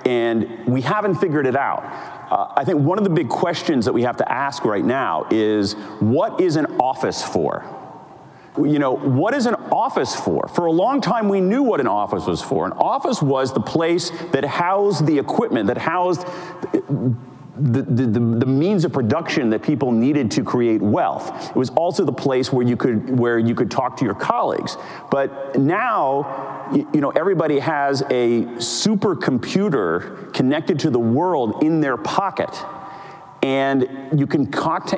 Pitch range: 120-170 Hz